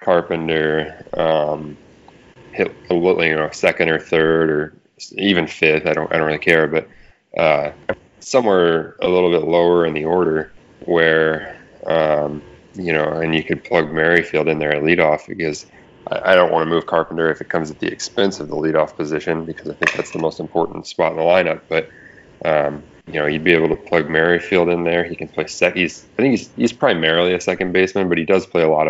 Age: 20-39